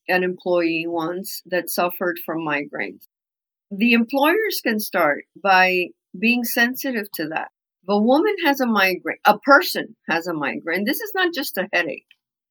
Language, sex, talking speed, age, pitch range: English, female, 155 wpm, 50-69, 195-260 Hz